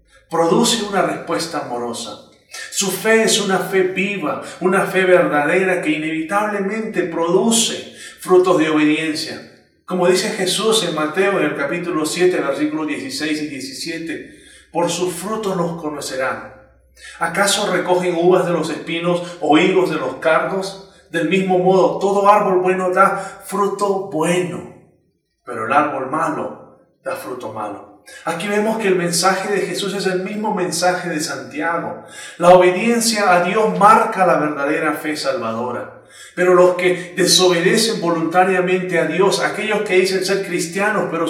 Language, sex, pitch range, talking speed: Spanish, male, 165-195 Hz, 145 wpm